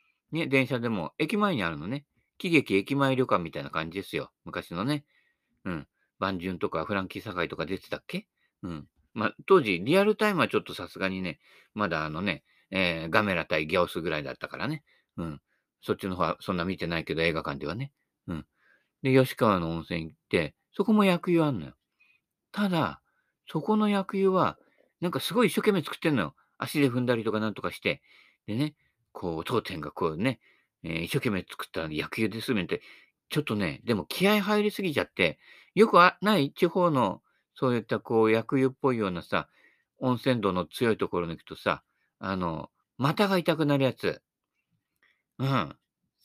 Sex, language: male, Japanese